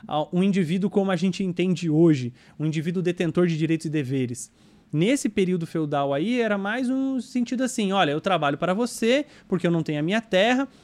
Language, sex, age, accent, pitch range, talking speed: English, male, 20-39, Brazilian, 170-220 Hz, 195 wpm